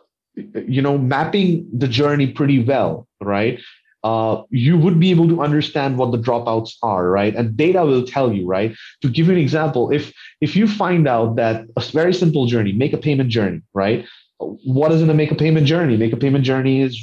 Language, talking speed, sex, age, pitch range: English, 210 wpm, male, 30-49, 115-150 Hz